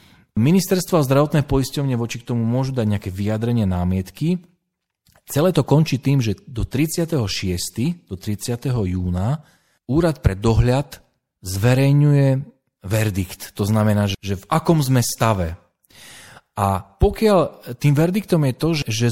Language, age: Slovak, 40-59